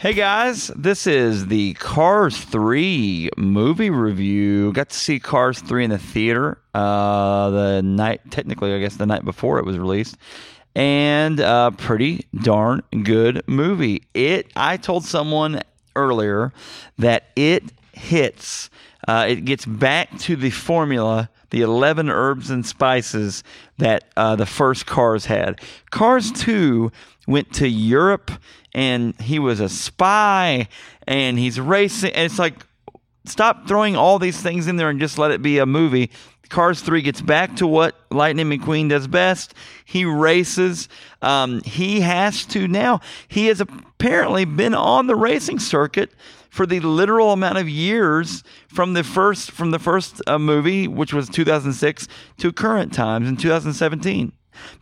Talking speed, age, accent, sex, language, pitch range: 150 wpm, 40-59, American, male, English, 120-180 Hz